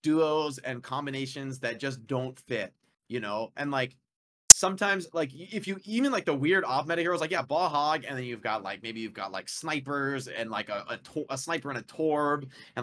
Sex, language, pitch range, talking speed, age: male, English, 130-160 Hz, 220 wpm, 20-39